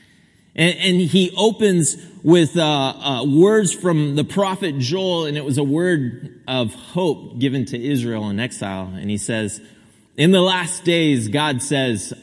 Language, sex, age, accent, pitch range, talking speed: English, male, 30-49, American, 130-180 Hz, 145 wpm